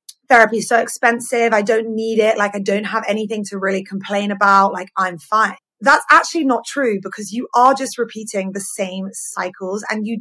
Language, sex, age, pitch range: English, female, 20-39, 190-230 Hz